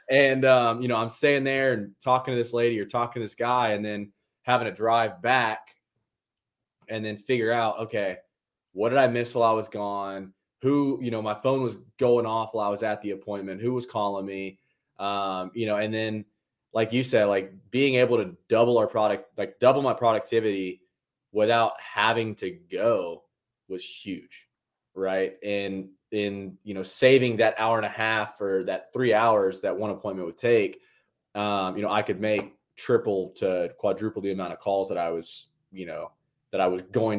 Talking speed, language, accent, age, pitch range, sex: 195 wpm, English, American, 20-39, 100-120 Hz, male